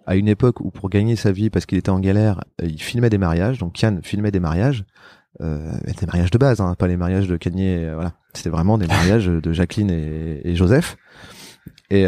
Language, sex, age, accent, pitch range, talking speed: French, male, 30-49, French, 90-110 Hz, 230 wpm